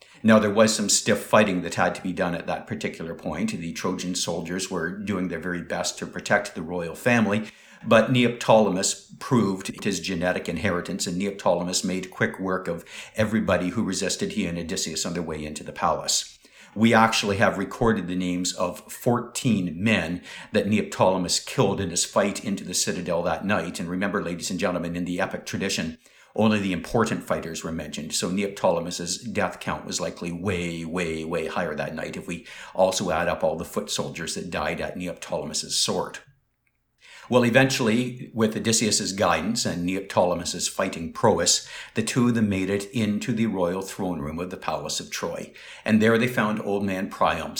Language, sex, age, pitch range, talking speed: English, male, 50-69, 90-110 Hz, 185 wpm